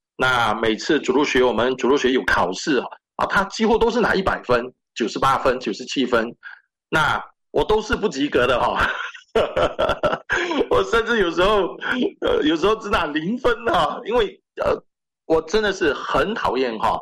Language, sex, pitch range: Chinese, male, 175-265 Hz